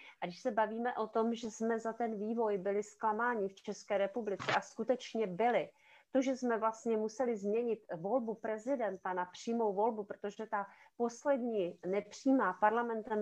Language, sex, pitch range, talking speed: Czech, female, 205-260 Hz, 160 wpm